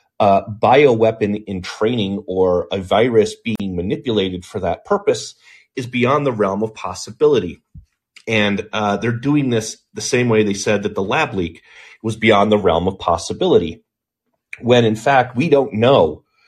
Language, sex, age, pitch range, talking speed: English, male, 30-49, 100-125 Hz, 165 wpm